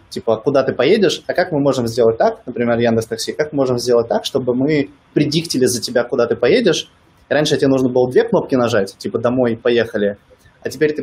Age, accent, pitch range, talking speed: 20-39, native, 115-145 Hz, 210 wpm